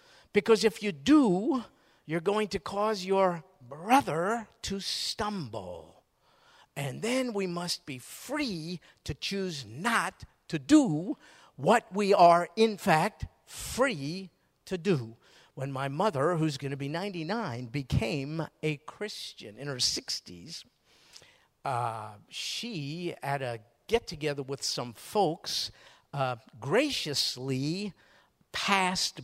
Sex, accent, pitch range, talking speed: male, American, 135-195 Hz, 115 wpm